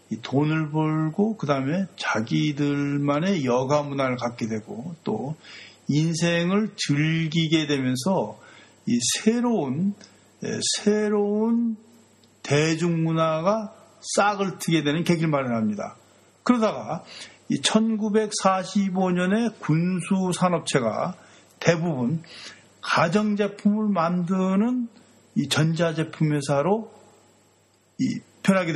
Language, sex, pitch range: Korean, male, 145-210 Hz